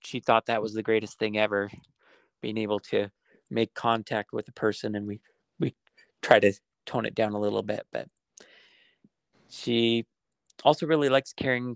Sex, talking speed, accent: male, 170 wpm, American